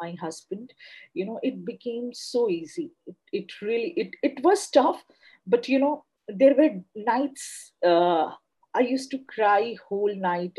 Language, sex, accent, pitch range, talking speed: Hindi, female, native, 180-285 Hz, 160 wpm